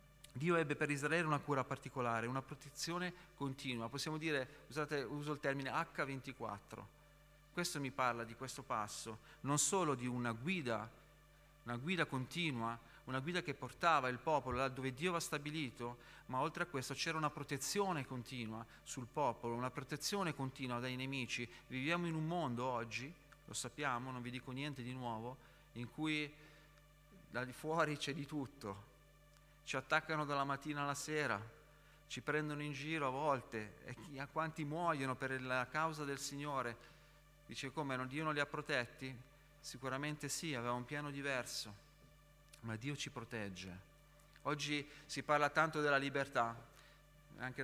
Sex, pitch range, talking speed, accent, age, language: male, 130-150 Hz, 155 wpm, native, 40-59, Italian